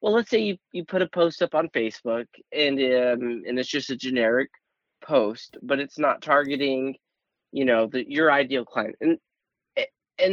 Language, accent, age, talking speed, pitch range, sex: English, American, 30-49, 180 wpm, 125-155 Hz, male